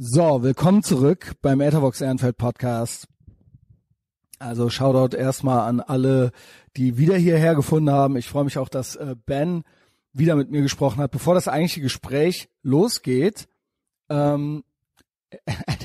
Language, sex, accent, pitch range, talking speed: German, male, German, 130-155 Hz, 130 wpm